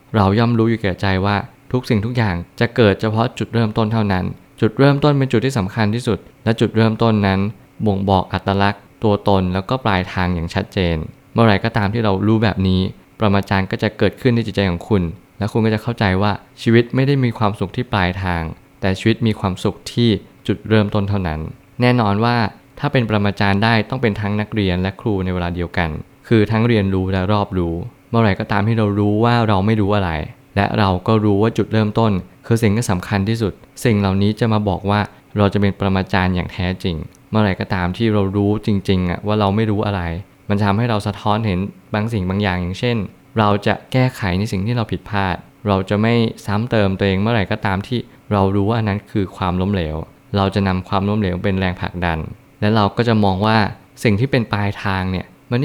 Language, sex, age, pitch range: Thai, male, 20-39, 95-115 Hz